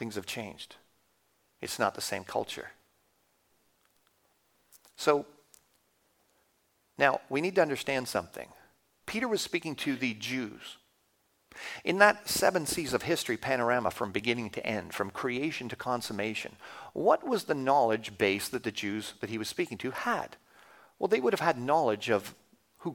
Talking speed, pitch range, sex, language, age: 150 wpm, 125-170 Hz, male, English, 50-69